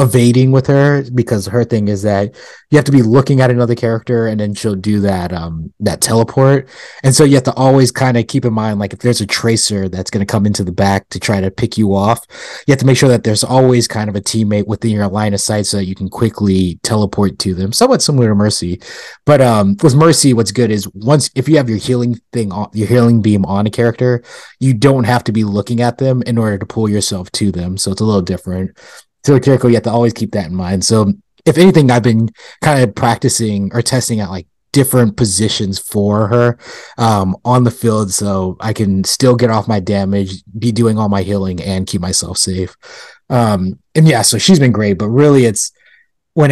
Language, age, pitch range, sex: English, 30-49, 100-125 Hz, male